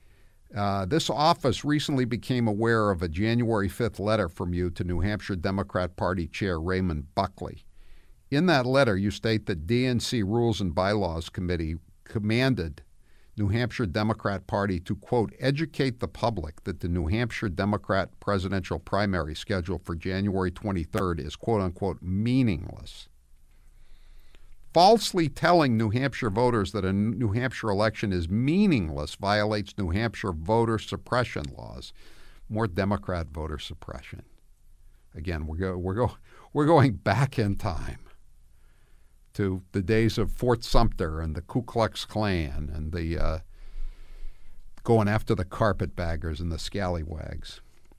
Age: 50-69